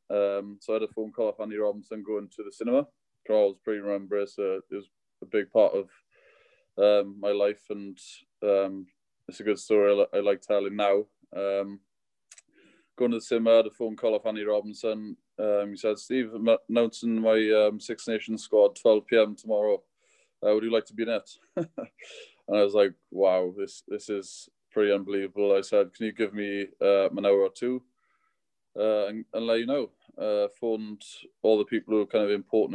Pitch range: 100-115 Hz